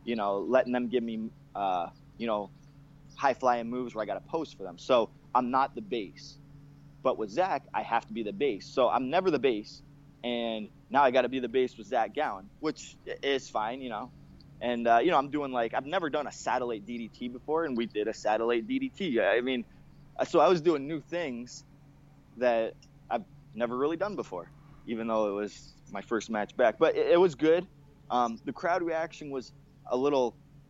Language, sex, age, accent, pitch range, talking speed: English, male, 20-39, American, 120-145 Hz, 210 wpm